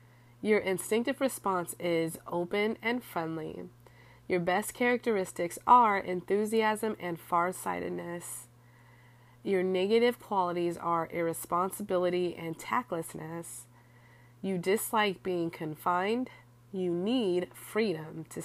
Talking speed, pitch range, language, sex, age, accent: 95 wpm, 165-200 Hz, English, female, 30-49, American